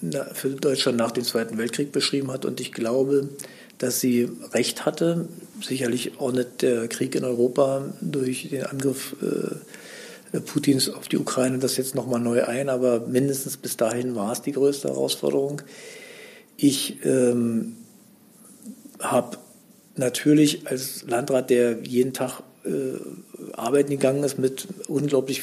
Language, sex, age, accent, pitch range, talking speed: German, male, 50-69, German, 120-140 Hz, 135 wpm